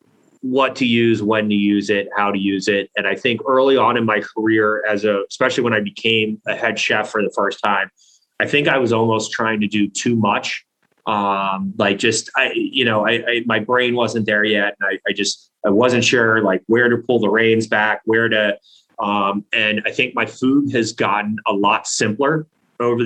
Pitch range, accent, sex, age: 105-125 Hz, American, male, 30-49